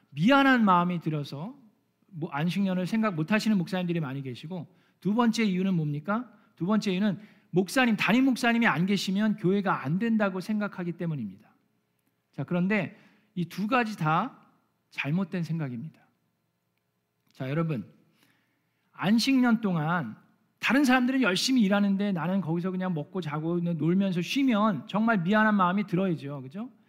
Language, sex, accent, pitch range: Korean, male, native, 170-230 Hz